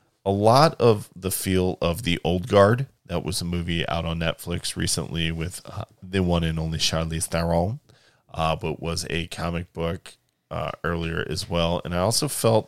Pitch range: 85-110 Hz